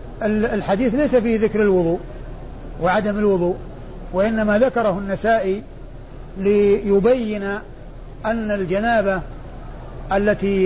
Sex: male